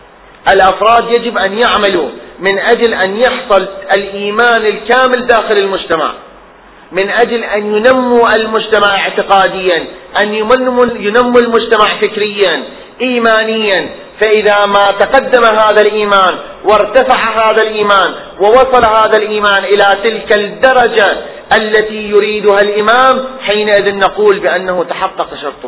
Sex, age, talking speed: male, 30-49, 105 wpm